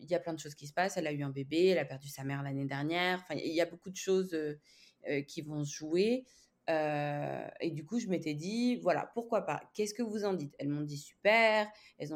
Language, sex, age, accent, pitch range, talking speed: French, female, 20-39, French, 145-175 Hz, 265 wpm